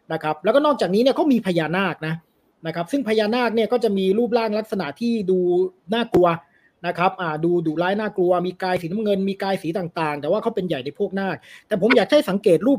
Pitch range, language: 165-220 Hz, Thai